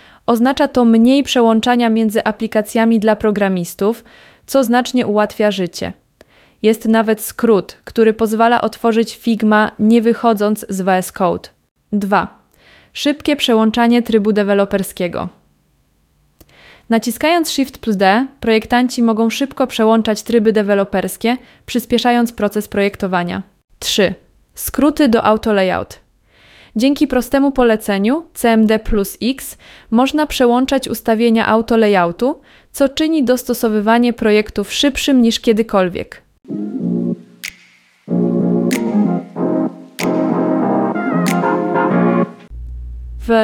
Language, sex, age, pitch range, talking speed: Polish, female, 20-39, 205-245 Hz, 85 wpm